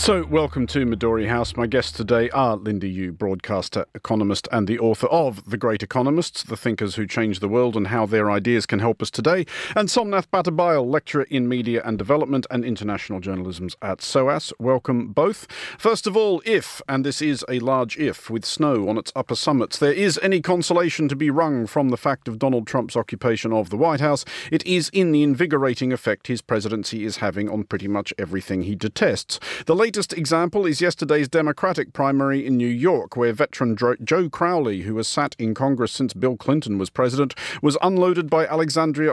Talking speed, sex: 195 wpm, male